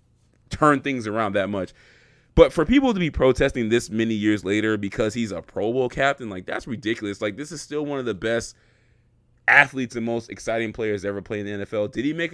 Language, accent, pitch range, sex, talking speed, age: English, American, 110-150 Hz, male, 220 wpm, 20-39